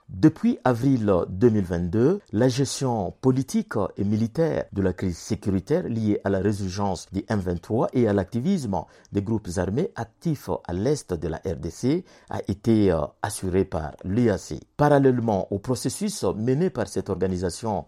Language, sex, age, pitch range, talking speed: French, male, 50-69, 95-125 Hz, 140 wpm